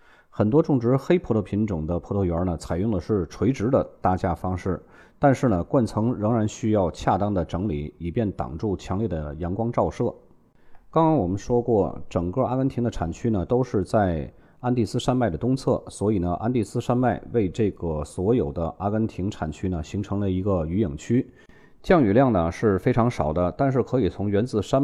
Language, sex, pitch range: Chinese, male, 85-120 Hz